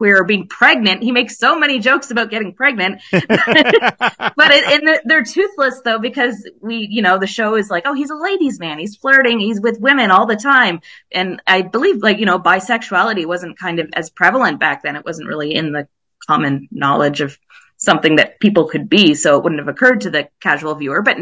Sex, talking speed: female, 210 wpm